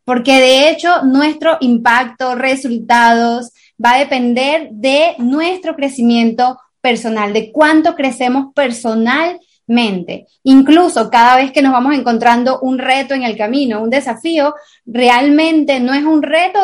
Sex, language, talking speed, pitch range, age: female, English, 130 wpm, 240-295 Hz, 20-39